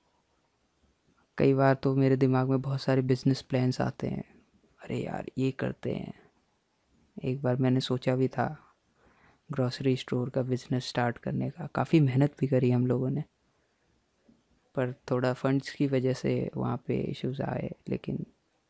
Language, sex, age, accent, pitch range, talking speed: Hindi, female, 20-39, native, 125-150 Hz, 155 wpm